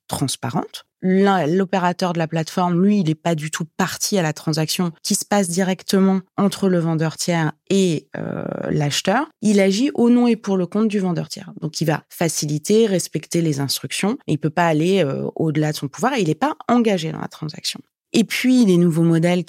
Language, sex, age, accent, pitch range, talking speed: French, female, 20-39, French, 155-210 Hz, 205 wpm